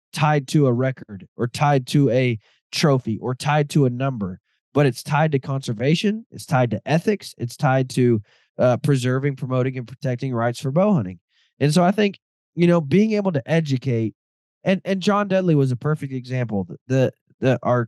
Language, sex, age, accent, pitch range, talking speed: English, male, 20-39, American, 125-160 Hz, 190 wpm